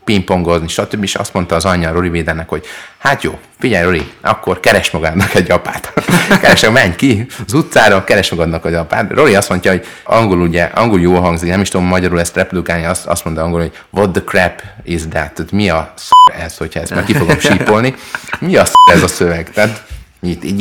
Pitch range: 85-105 Hz